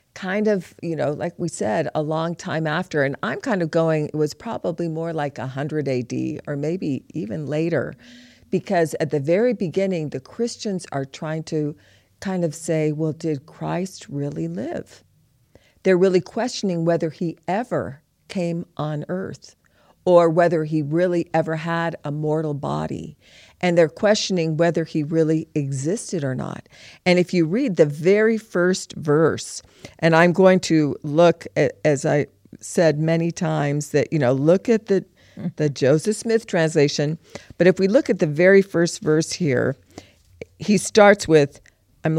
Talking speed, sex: 165 wpm, female